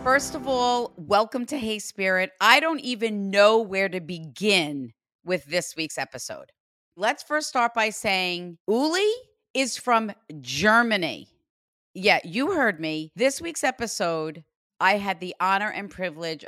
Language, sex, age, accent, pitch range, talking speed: English, female, 40-59, American, 160-230 Hz, 145 wpm